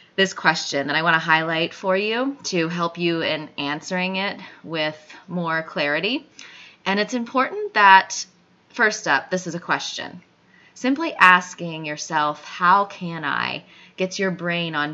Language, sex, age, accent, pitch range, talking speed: English, female, 20-39, American, 155-190 Hz, 155 wpm